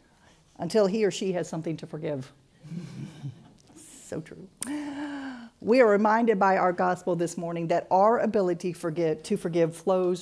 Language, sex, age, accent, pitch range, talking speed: English, female, 50-69, American, 155-200 Hz, 140 wpm